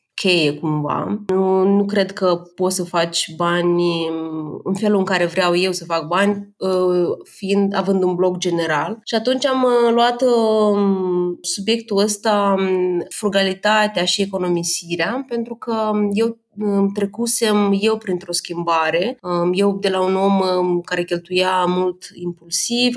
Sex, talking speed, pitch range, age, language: female, 130 wpm, 175-210 Hz, 20-39, Romanian